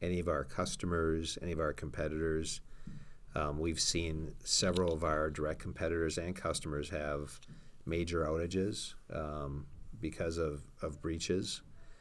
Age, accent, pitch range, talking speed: 50-69, American, 70-80 Hz, 130 wpm